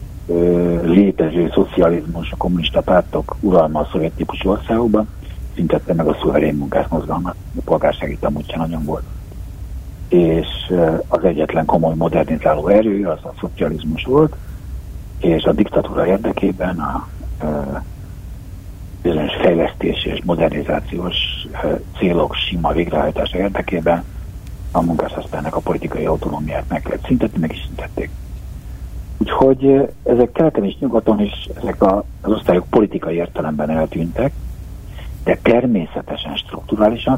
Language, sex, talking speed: Hungarian, male, 110 wpm